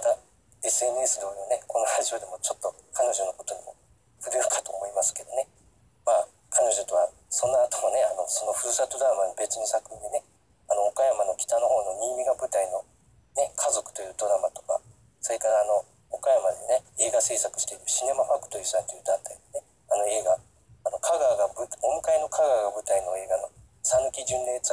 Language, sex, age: Japanese, male, 40-59